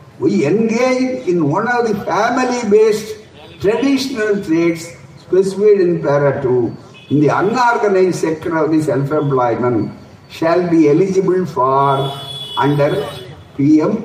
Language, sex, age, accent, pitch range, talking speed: Tamil, male, 60-79, native, 150-230 Hz, 105 wpm